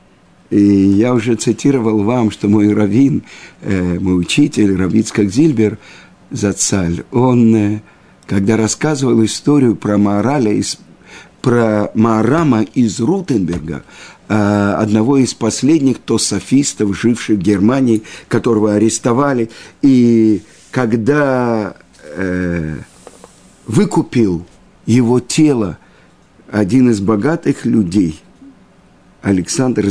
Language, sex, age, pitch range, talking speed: Russian, male, 50-69, 105-130 Hz, 80 wpm